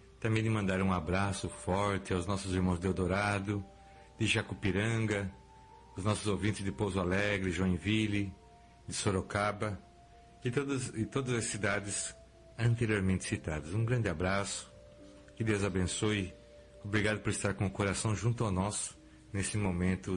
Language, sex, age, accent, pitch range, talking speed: Portuguese, male, 60-79, Brazilian, 95-125 Hz, 140 wpm